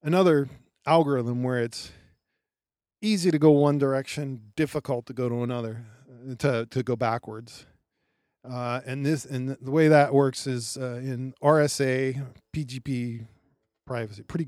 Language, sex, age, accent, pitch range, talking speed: English, male, 40-59, American, 115-145 Hz, 135 wpm